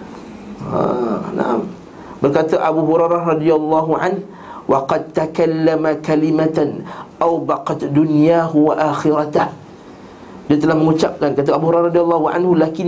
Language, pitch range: Malay, 150-170 Hz